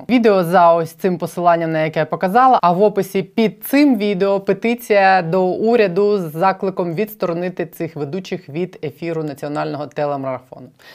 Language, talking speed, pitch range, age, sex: Ukrainian, 150 wpm, 160-195 Hz, 20-39, female